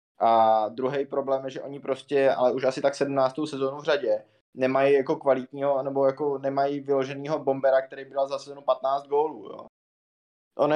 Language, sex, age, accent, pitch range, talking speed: Czech, male, 20-39, native, 125-140 Hz, 175 wpm